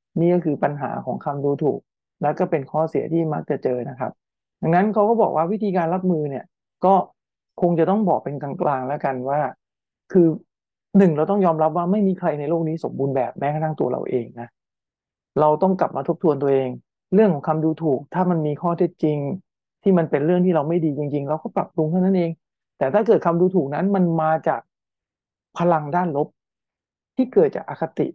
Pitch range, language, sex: 145-185 Hz, English, male